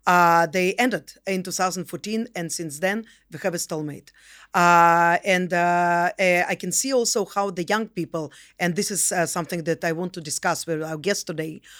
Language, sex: English, female